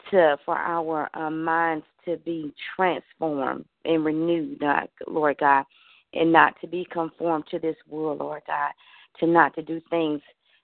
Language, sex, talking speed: English, female, 160 wpm